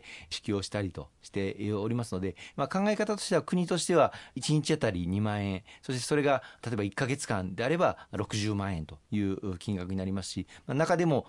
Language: Japanese